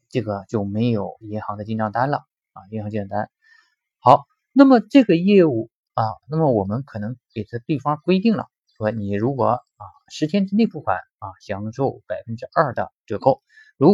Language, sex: Chinese, male